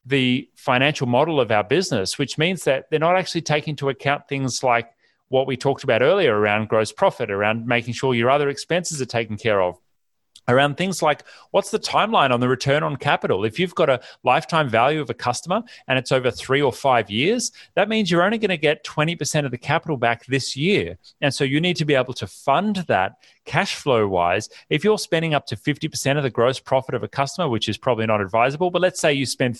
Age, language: 30-49, English